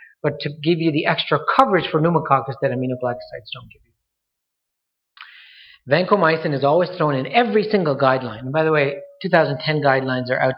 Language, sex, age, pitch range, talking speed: English, male, 40-59, 130-160 Hz, 165 wpm